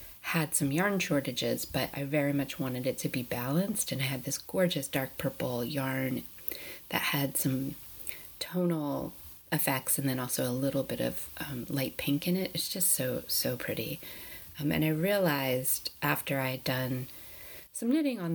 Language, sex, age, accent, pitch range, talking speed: English, female, 30-49, American, 130-165 Hz, 175 wpm